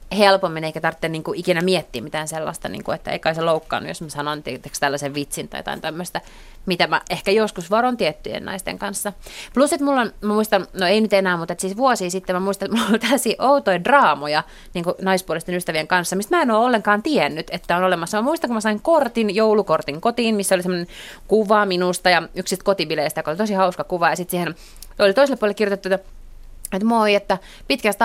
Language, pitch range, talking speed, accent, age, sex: Finnish, 175-255 Hz, 215 wpm, native, 30-49, female